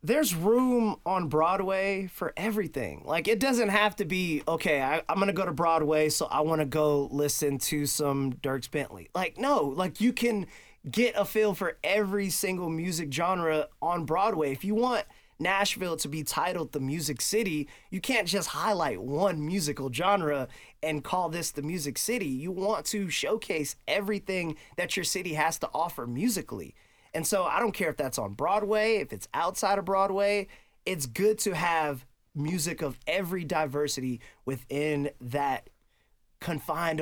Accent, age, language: American, 20-39, English